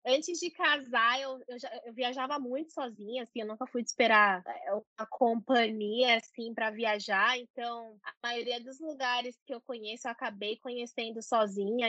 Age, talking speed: 20-39, 155 wpm